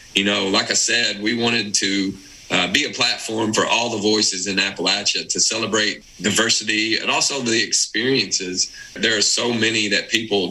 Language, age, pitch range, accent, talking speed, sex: English, 30-49, 95-110 Hz, American, 175 wpm, male